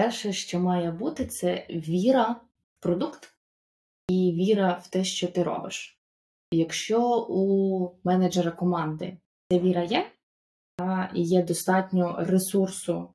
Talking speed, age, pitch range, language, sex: 120 wpm, 20-39, 175-195 Hz, Ukrainian, female